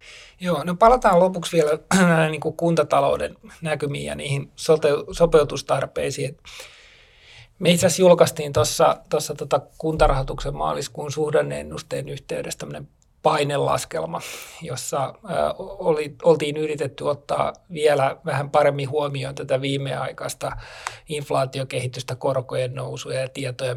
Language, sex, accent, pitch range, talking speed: Finnish, male, native, 135-155 Hz, 100 wpm